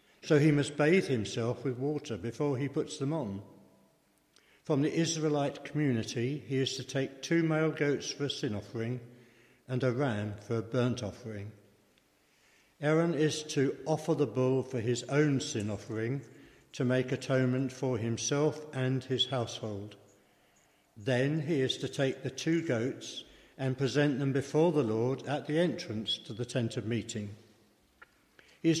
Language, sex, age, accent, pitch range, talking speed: English, male, 60-79, British, 115-150 Hz, 160 wpm